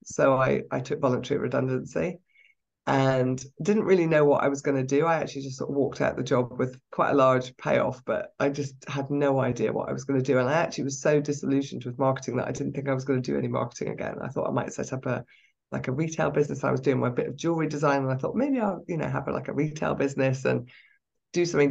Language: English